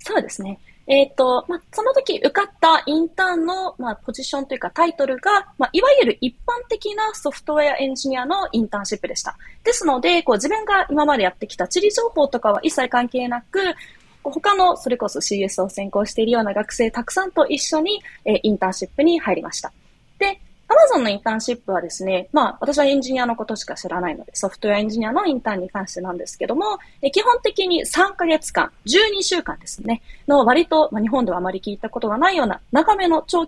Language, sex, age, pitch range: Japanese, female, 20-39, 235-370 Hz